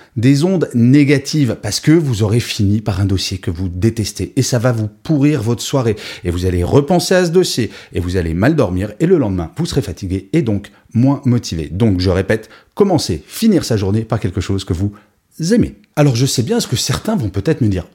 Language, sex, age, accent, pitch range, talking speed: French, male, 30-49, French, 100-140 Hz, 225 wpm